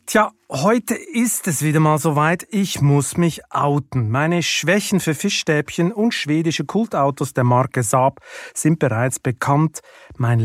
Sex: male